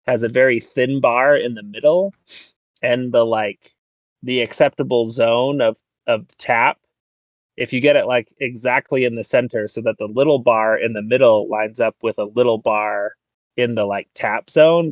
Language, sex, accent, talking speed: English, male, American, 180 wpm